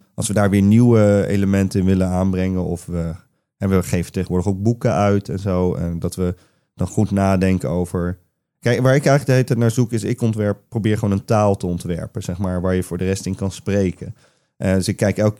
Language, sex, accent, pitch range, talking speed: Dutch, male, Dutch, 90-105 Hz, 235 wpm